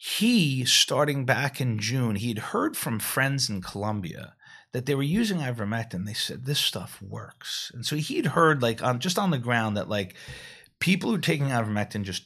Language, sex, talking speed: English, male, 190 wpm